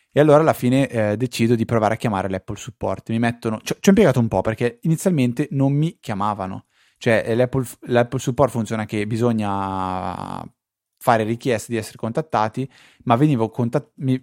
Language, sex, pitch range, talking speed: Italian, male, 105-130 Hz, 170 wpm